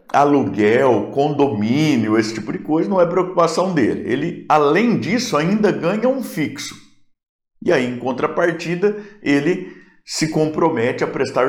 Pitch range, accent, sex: 135-175 Hz, Brazilian, male